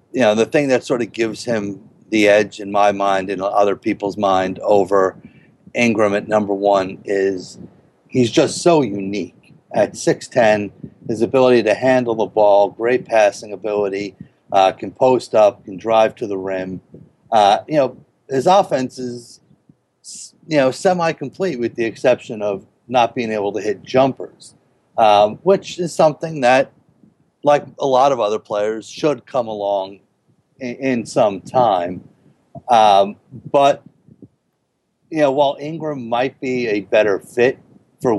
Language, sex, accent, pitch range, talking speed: English, male, American, 100-130 Hz, 150 wpm